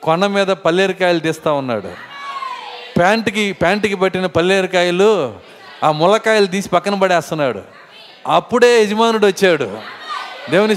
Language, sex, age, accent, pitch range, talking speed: Telugu, male, 30-49, native, 170-230 Hz, 100 wpm